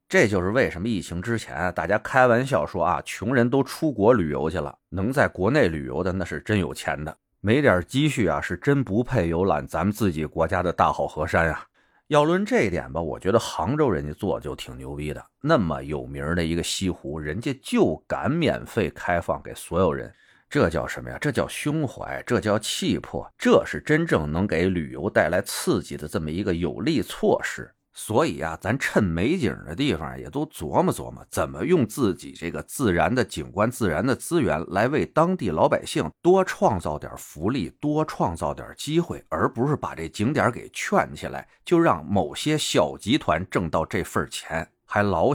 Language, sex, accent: Chinese, male, native